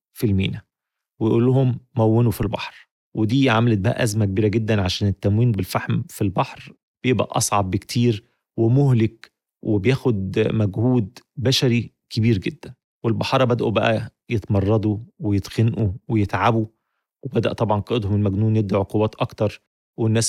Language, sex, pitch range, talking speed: Arabic, male, 105-125 Hz, 120 wpm